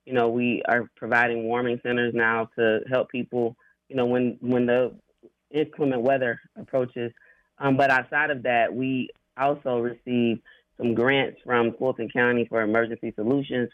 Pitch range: 115-130 Hz